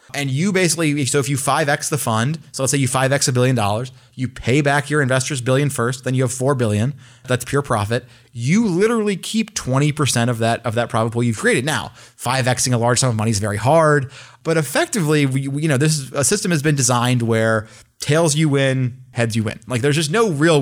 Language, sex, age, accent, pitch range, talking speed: English, male, 30-49, American, 120-145 Hz, 220 wpm